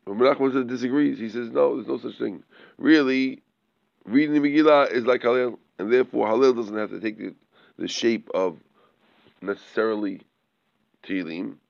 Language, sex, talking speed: English, male, 155 wpm